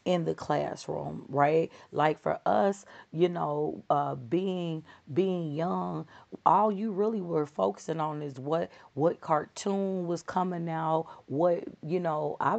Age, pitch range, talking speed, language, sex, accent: 40-59, 135-170 Hz, 145 wpm, English, female, American